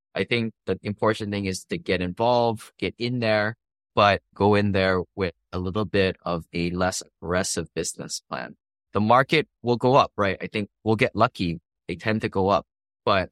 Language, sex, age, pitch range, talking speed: English, male, 20-39, 90-105 Hz, 195 wpm